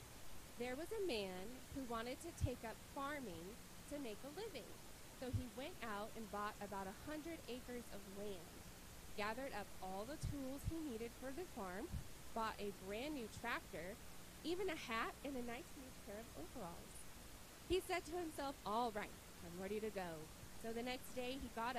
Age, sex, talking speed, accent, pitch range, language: 20-39, female, 185 wpm, American, 215-310 Hz, English